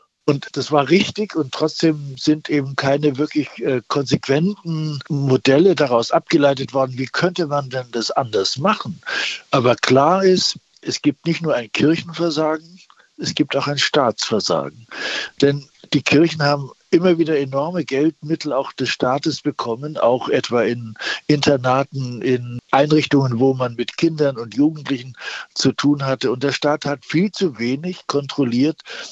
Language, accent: German, German